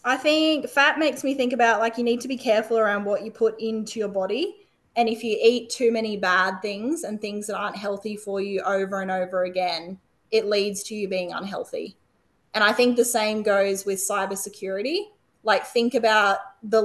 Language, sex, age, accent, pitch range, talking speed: English, female, 20-39, Australian, 195-225 Hz, 205 wpm